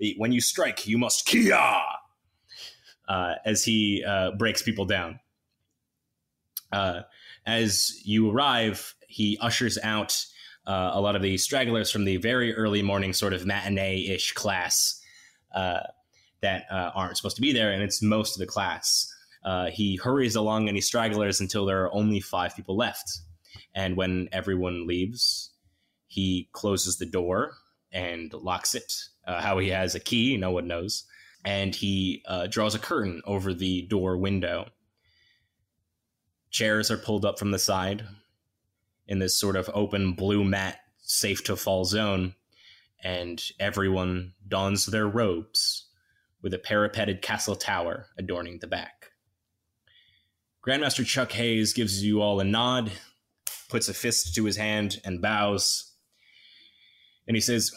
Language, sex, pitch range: English, male, 95-110 Hz